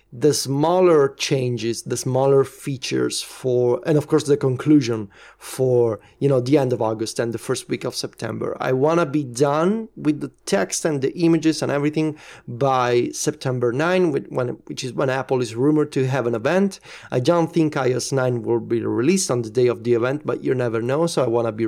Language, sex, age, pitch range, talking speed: English, male, 30-49, 125-155 Hz, 205 wpm